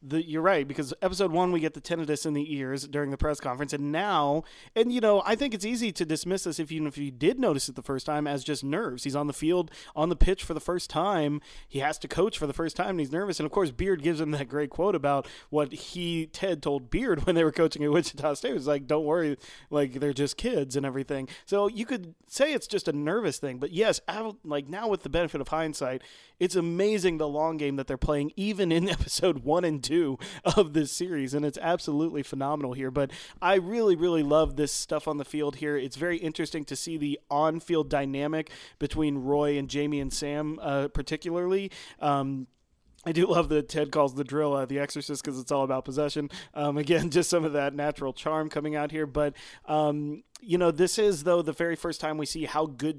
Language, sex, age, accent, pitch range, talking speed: English, male, 30-49, American, 145-170 Hz, 230 wpm